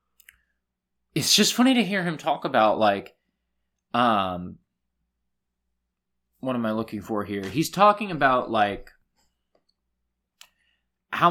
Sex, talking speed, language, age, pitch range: male, 110 wpm, English, 20-39, 105-155 Hz